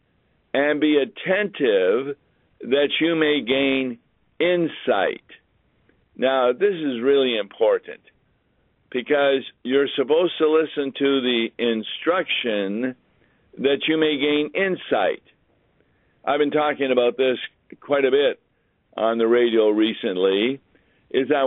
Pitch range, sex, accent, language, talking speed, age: 115-150 Hz, male, American, English, 110 wpm, 50-69